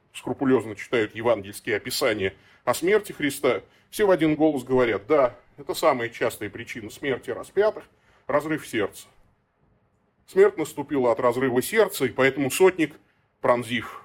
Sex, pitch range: male, 125-180 Hz